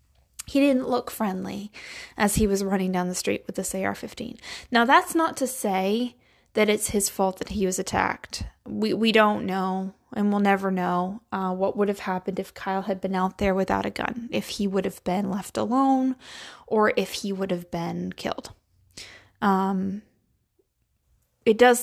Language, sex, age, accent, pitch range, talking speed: English, female, 20-39, American, 190-230 Hz, 180 wpm